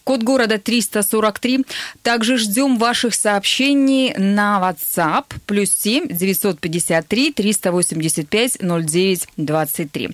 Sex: female